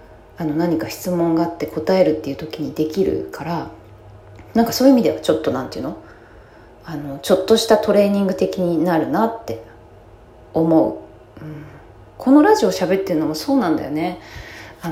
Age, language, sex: 20-39, Japanese, female